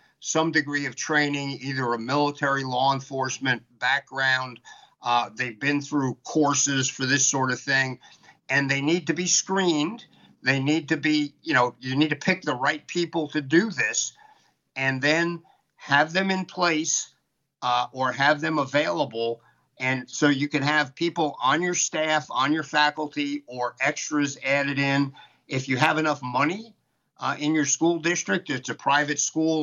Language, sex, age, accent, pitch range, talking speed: English, male, 50-69, American, 130-155 Hz, 170 wpm